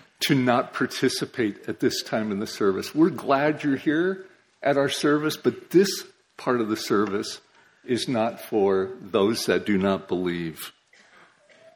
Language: English